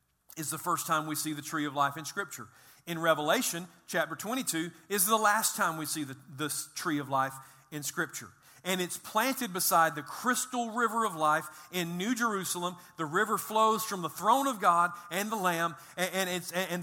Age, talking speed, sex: 40-59, 190 wpm, male